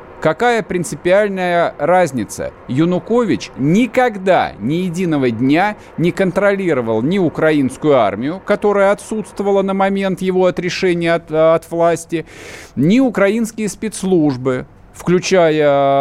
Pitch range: 155-200 Hz